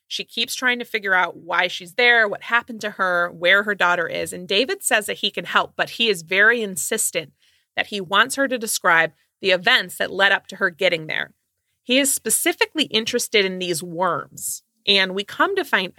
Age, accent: 30-49, American